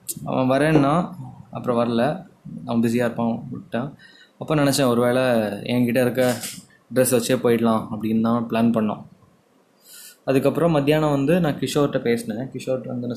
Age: 20-39